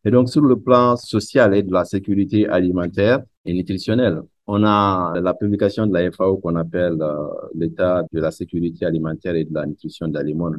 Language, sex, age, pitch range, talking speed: French, male, 50-69, 85-110 Hz, 200 wpm